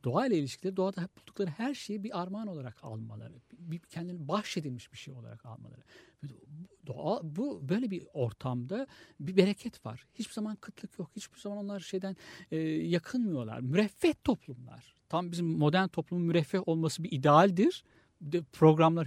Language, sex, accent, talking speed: Turkish, male, native, 145 wpm